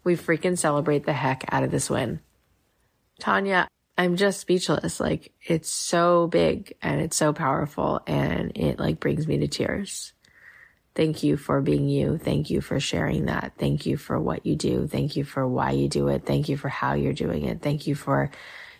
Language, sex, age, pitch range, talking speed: English, female, 20-39, 135-155 Hz, 195 wpm